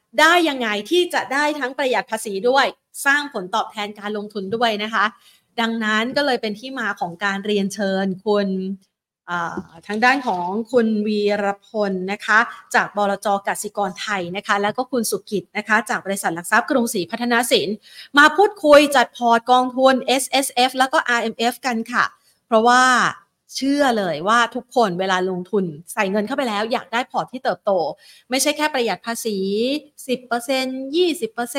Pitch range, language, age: 200-250 Hz, Thai, 30-49